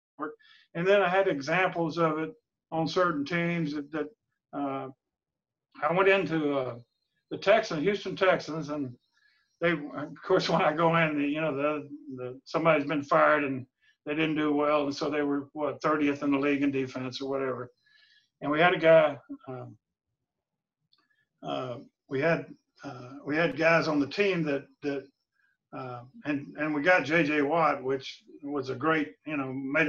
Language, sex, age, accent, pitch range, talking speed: English, male, 50-69, American, 140-180 Hz, 175 wpm